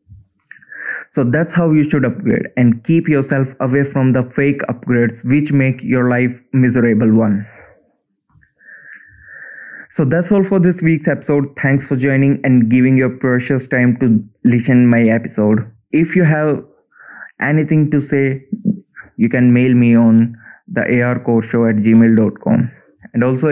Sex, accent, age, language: male, Indian, 20-39, English